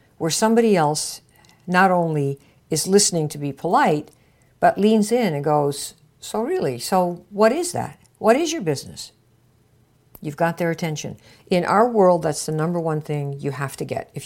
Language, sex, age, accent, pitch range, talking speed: English, female, 60-79, American, 145-200 Hz, 175 wpm